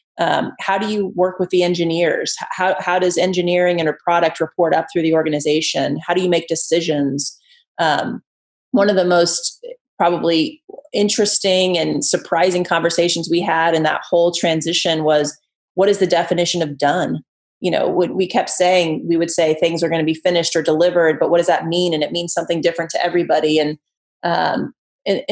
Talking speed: 190 wpm